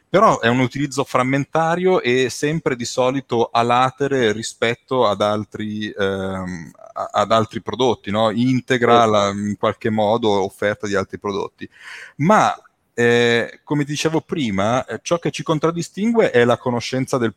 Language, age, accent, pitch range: Italian, 30-49, native, 105-135 Hz